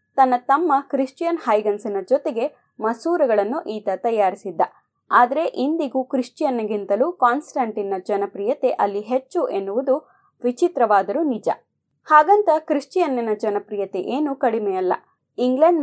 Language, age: Kannada, 20-39